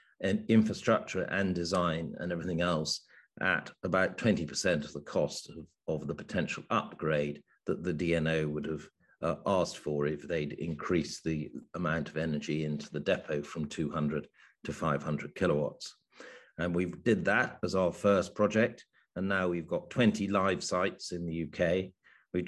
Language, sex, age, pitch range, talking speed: English, male, 50-69, 75-90 Hz, 165 wpm